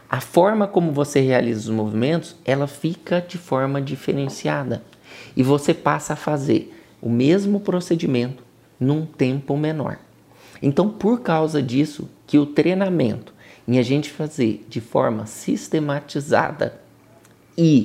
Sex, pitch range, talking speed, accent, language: male, 125-155 Hz, 130 wpm, Brazilian, Portuguese